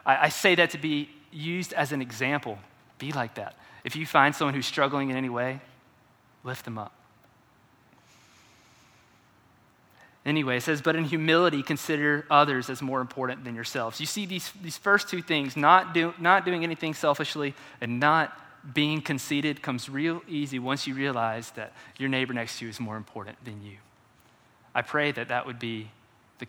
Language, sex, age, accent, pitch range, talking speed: English, male, 20-39, American, 120-155 Hz, 175 wpm